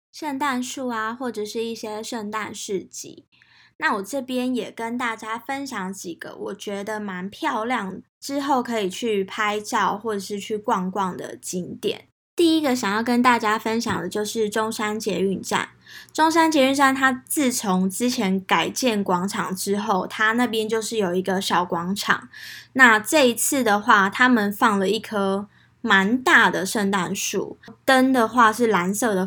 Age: 10-29